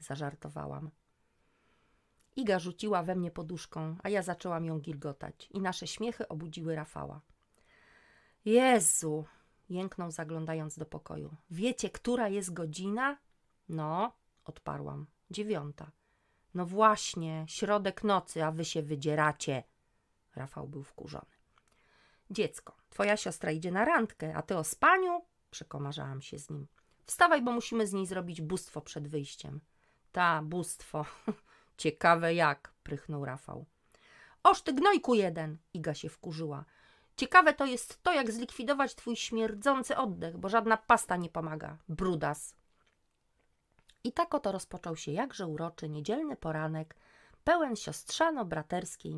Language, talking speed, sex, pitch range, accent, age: Polish, 125 wpm, female, 155-210 Hz, native, 40-59